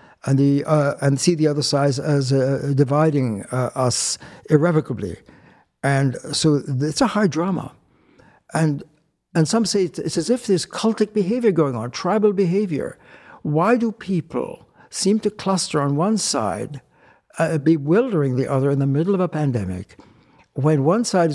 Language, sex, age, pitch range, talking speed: English, male, 60-79, 130-175 Hz, 155 wpm